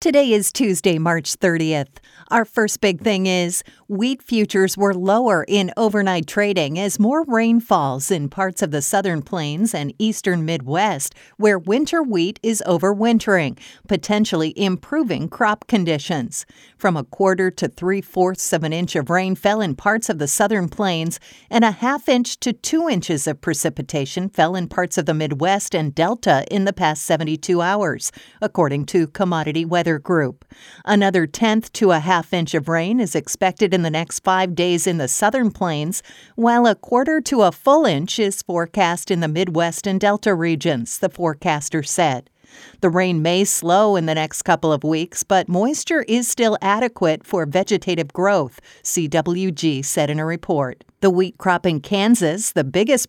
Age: 50-69